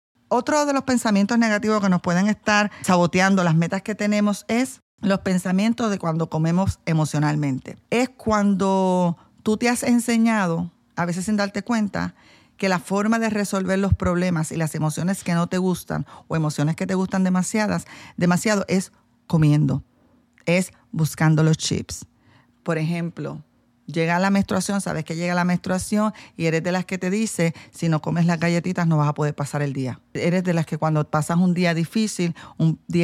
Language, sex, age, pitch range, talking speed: Spanish, female, 40-59, 160-205 Hz, 180 wpm